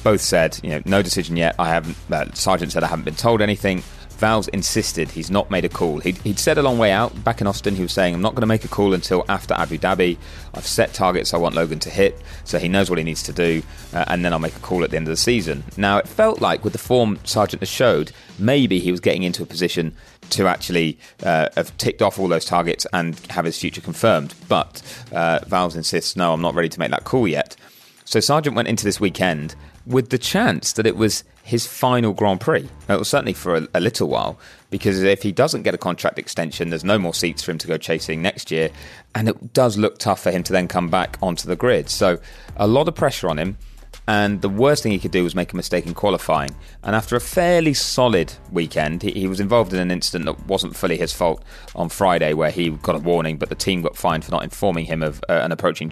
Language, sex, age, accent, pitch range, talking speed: English, male, 30-49, British, 85-110 Hz, 255 wpm